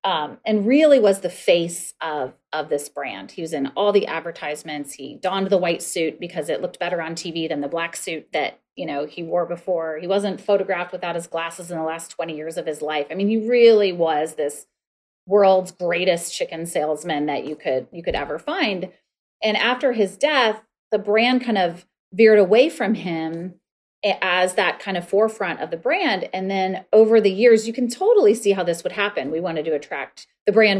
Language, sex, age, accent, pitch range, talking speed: English, female, 30-49, American, 165-210 Hz, 210 wpm